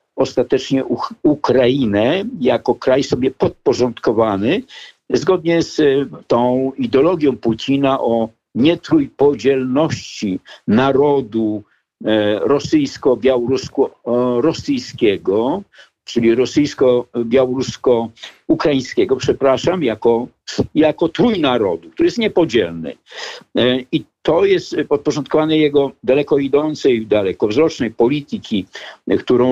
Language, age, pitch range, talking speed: Polish, 50-69, 130-195 Hz, 70 wpm